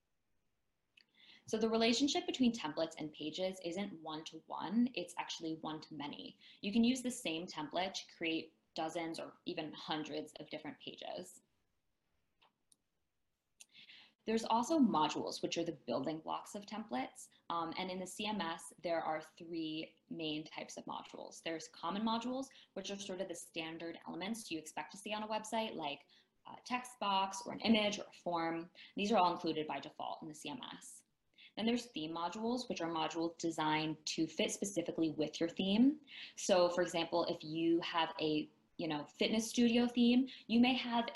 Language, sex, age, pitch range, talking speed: English, female, 20-39, 160-220 Hz, 165 wpm